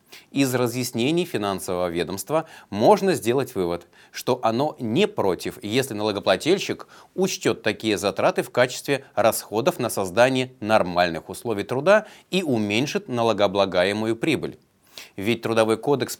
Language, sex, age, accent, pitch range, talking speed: Russian, male, 30-49, native, 100-145 Hz, 115 wpm